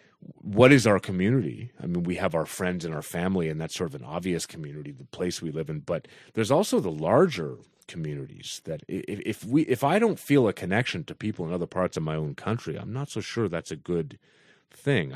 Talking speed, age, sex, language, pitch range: 220 wpm, 30-49, male, English, 85-130 Hz